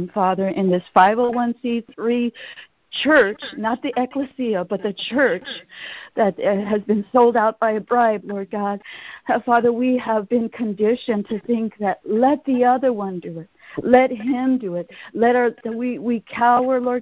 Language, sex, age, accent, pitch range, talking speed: English, female, 50-69, American, 205-245 Hz, 160 wpm